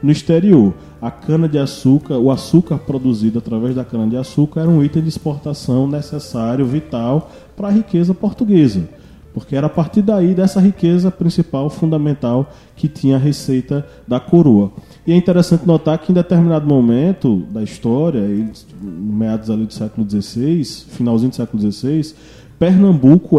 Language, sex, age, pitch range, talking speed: Portuguese, male, 20-39, 120-165 Hz, 145 wpm